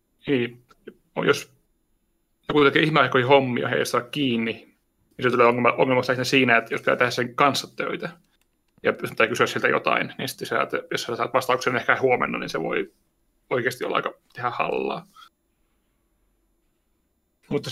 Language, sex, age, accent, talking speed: Finnish, male, 30-49, native, 165 wpm